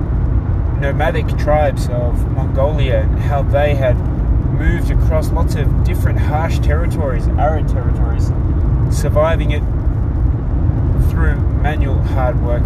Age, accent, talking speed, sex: 20-39, Australian, 110 wpm, male